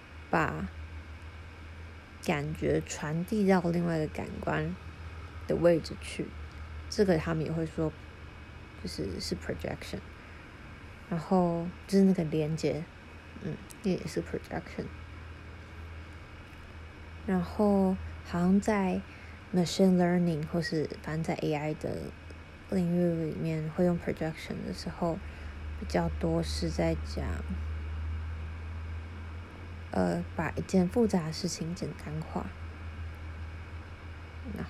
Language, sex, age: Chinese, female, 20-39